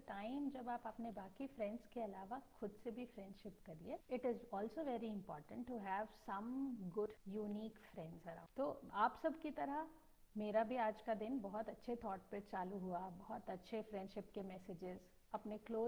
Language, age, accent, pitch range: Hindi, 50-69, native, 205-260 Hz